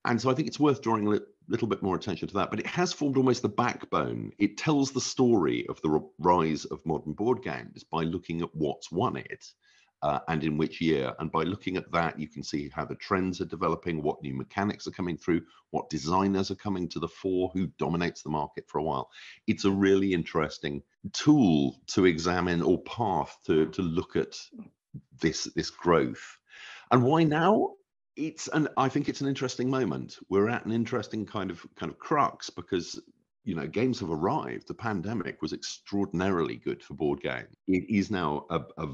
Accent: British